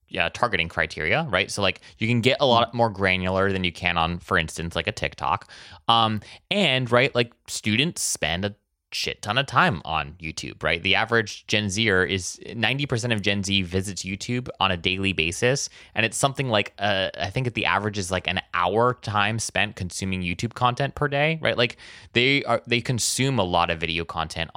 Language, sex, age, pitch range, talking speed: English, male, 20-39, 90-120 Hz, 205 wpm